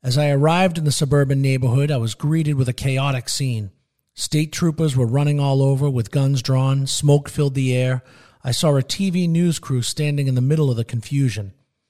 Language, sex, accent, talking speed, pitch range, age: English, male, American, 200 wpm, 120-150 Hz, 40-59